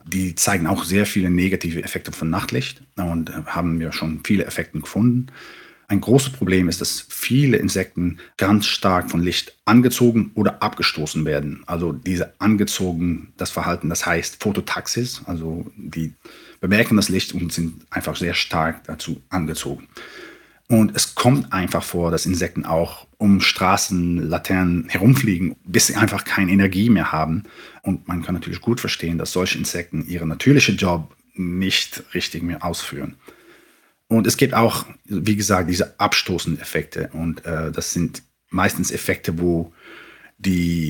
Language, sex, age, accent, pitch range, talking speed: German, male, 40-59, German, 85-100 Hz, 150 wpm